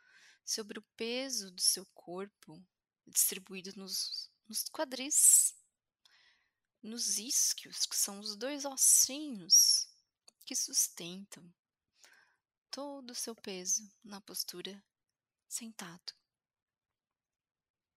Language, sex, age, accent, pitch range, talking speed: Portuguese, female, 20-39, Brazilian, 195-255 Hz, 85 wpm